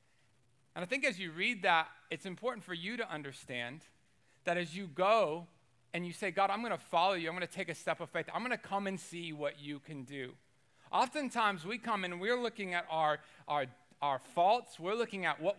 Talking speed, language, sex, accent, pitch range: 225 wpm, English, male, American, 145-205 Hz